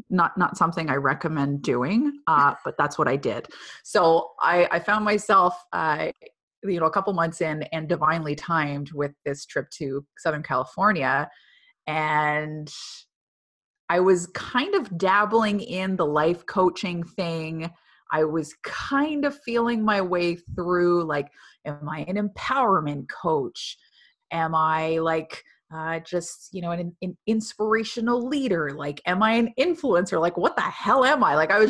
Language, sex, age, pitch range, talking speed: English, female, 30-49, 160-220 Hz, 155 wpm